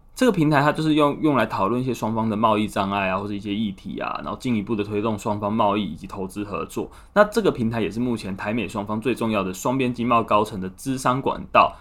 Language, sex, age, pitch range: Chinese, male, 20-39, 105-140 Hz